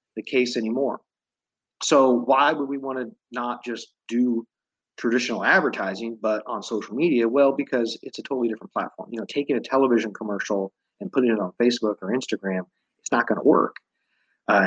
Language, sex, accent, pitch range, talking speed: English, male, American, 110-130 Hz, 180 wpm